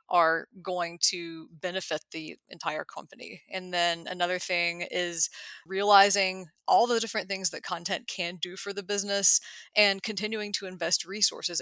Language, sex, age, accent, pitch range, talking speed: English, female, 30-49, American, 170-195 Hz, 150 wpm